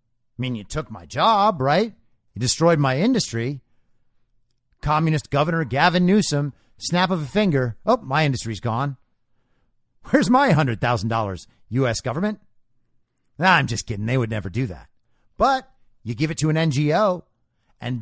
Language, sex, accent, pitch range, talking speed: English, male, American, 120-190 Hz, 155 wpm